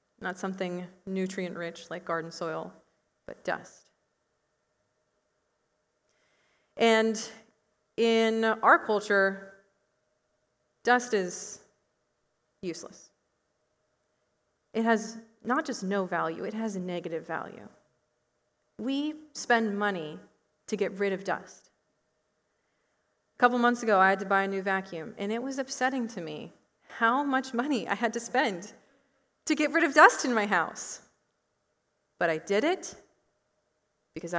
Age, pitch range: 30-49, 180-255 Hz